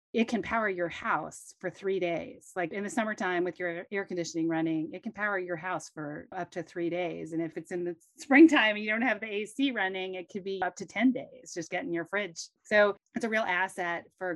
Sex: female